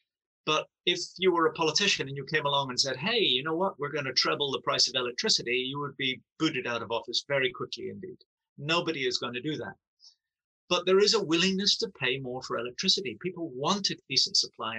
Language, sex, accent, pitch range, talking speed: English, male, British, 130-185 Hz, 225 wpm